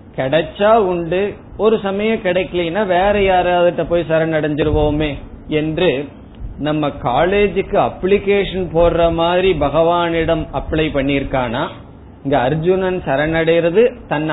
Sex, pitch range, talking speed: male, 145-185 Hz, 90 wpm